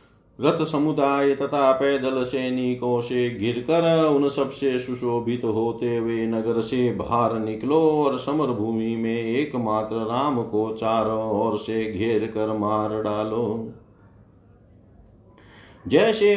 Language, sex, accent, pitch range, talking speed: Hindi, male, native, 105-135 Hz, 115 wpm